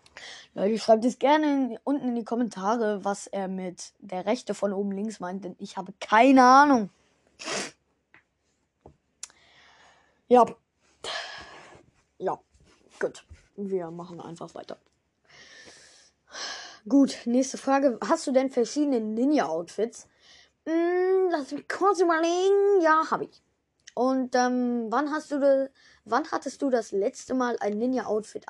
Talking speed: 115 wpm